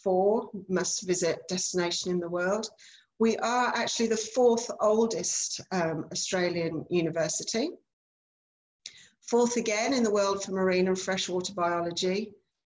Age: 40-59